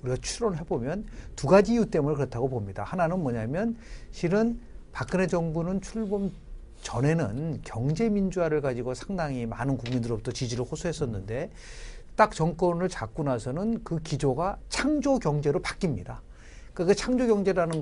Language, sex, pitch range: Korean, male, 130-190 Hz